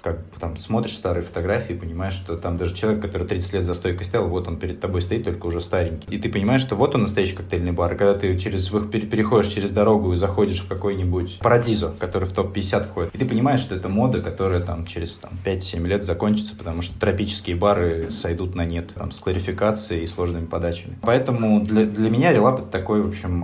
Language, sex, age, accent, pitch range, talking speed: Russian, male, 20-39, native, 90-105 Hz, 230 wpm